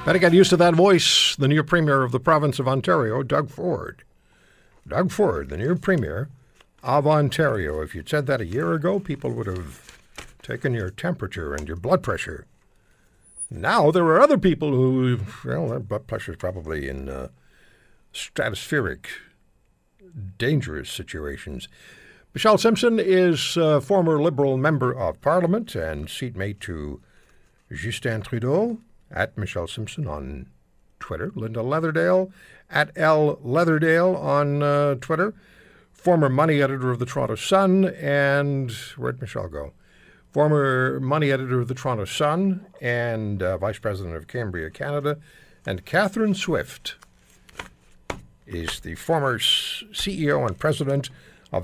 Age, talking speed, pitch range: 60-79, 140 wpm, 105-160 Hz